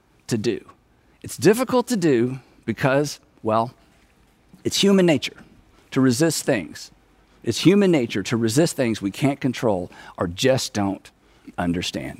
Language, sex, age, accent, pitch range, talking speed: English, male, 50-69, American, 135-200 Hz, 135 wpm